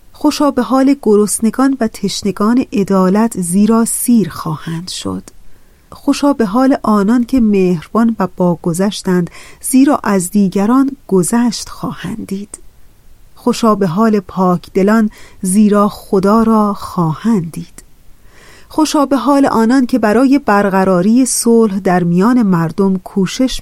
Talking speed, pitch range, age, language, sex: 120 wpm, 185-230 Hz, 30-49, Persian, female